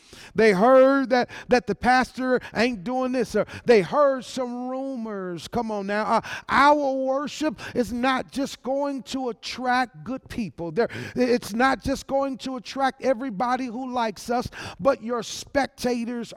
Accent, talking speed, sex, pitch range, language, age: American, 145 wpm, male, 200-255 Hz, English, 50-69